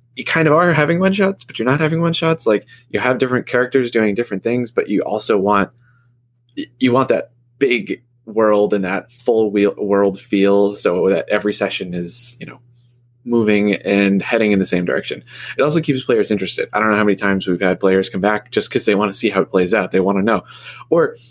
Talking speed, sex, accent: 230 wpm, male, American